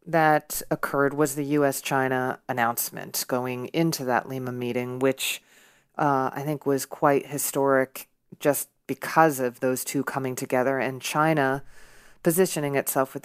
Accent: American